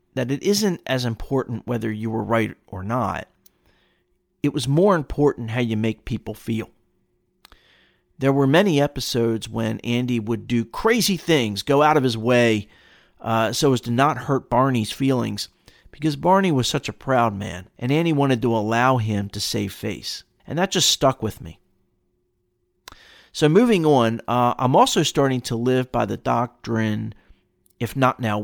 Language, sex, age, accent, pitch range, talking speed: English, male, 40-59, American, 110-140 Hz, 170 wpm